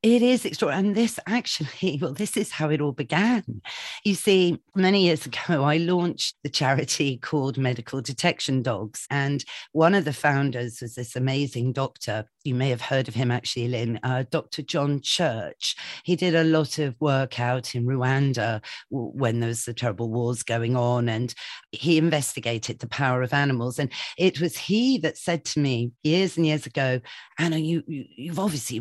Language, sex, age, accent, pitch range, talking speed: English, female, 40-59, British, 125-160 Hz, 180 wpm